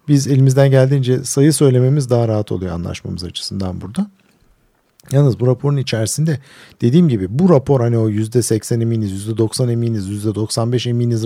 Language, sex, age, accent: Turkish, male, 50-69, native